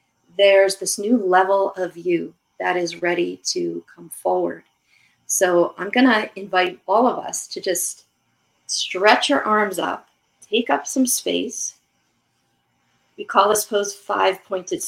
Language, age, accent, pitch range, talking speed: English, 40-59, American, 180-220 Hz, 140 wpm